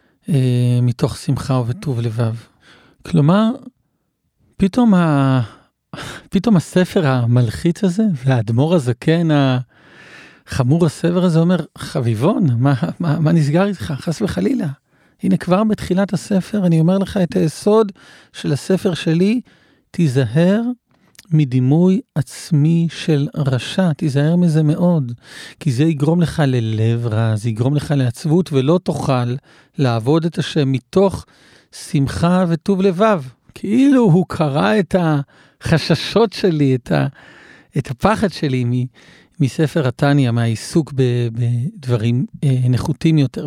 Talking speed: 110 wpm